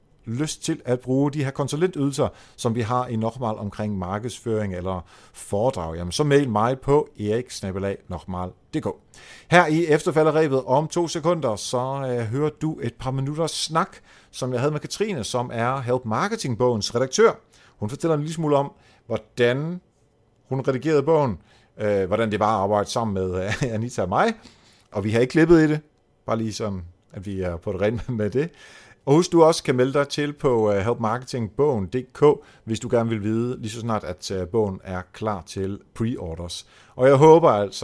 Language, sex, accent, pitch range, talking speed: Danish, male, native, 105-140 Hz, 175 wpm